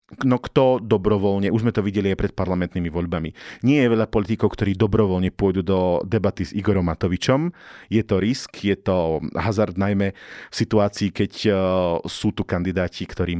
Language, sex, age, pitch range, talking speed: Slovak, male, 40-59, 95-115 Hz, 165 wpm